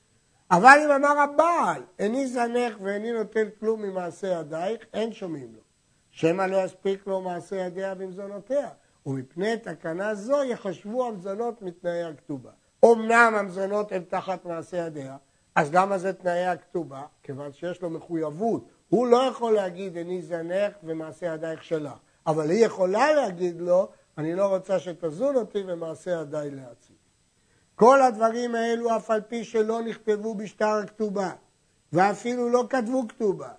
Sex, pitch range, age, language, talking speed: male, 175-235 Hz, 60-79, Hebrew, 140 wpm